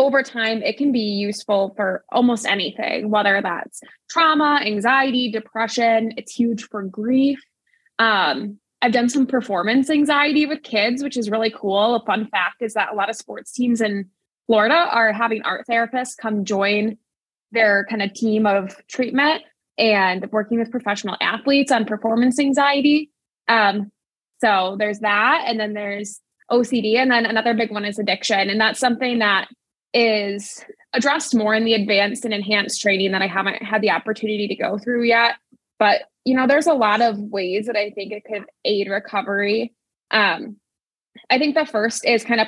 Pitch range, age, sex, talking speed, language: 205-245 Hz, 20-39, female, 175 wpm, English